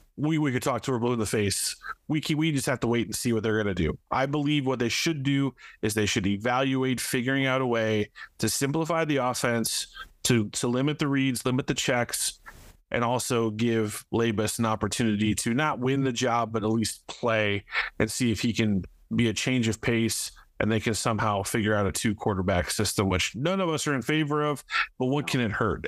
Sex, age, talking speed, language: male, 30-49, 225 wpm, English